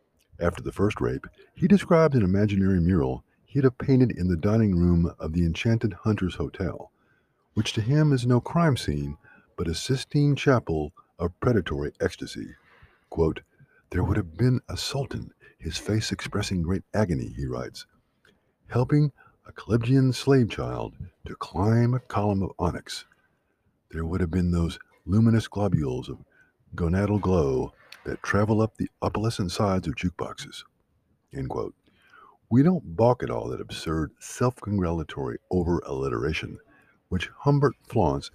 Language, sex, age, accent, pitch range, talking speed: English, male, 50-69, American, 85-125 Hz, 145 wpm